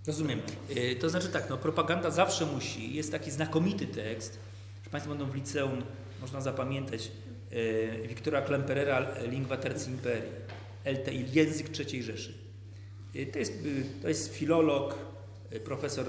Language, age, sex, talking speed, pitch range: Polish, 40-59, male, 145 wpm, 110-140 Hz